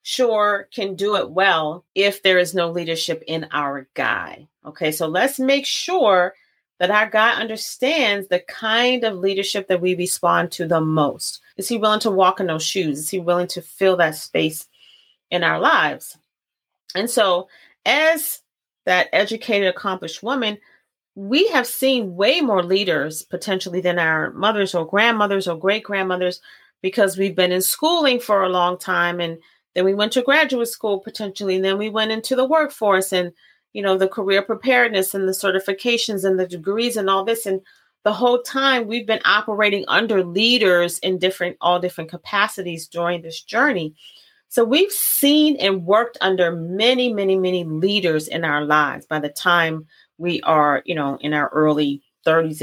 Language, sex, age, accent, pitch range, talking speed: English, female, 30-49, American, 175-220 Hz, 170 wpm